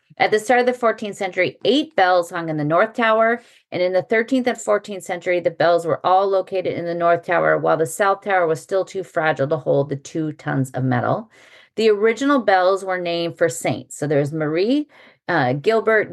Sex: female